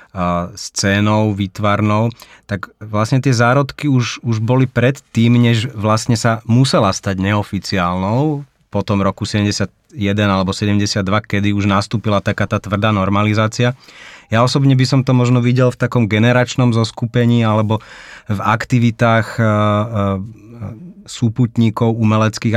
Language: Slovak